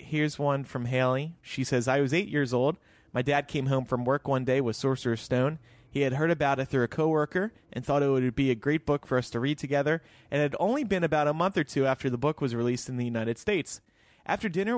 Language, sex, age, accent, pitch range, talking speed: English, male, 30-49, American, 115-145 Hz, 260 wpm